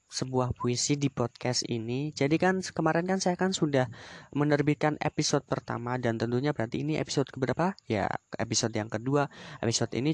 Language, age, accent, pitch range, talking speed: Indonesian, 20-39, native, 125-150 Hz, 160 wpm